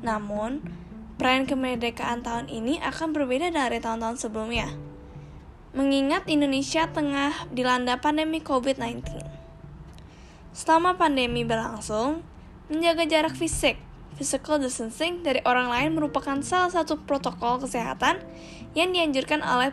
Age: 10-29